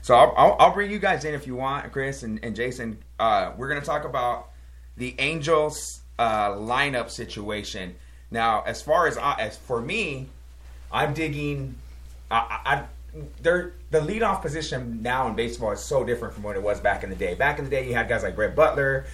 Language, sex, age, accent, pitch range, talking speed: English, male, 30-49, American, 100-140 Hz, 210 wpm